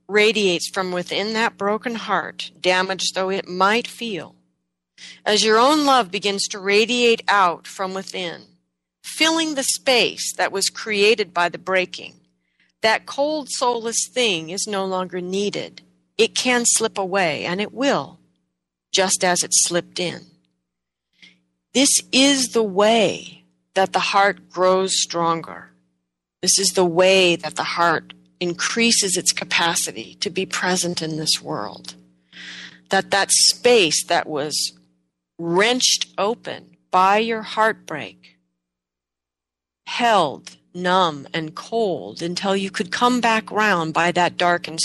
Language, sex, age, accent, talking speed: English, female, 40-59, American, 130 wpm